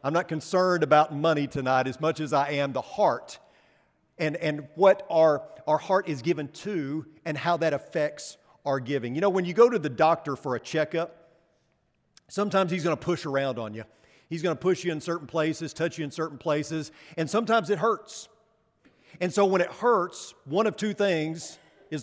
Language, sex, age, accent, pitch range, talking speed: English, male, 40-59, American, 145-185 Hz, 200 wpm